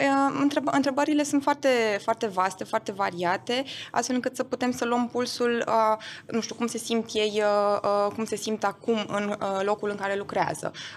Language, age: Romanian, 20-39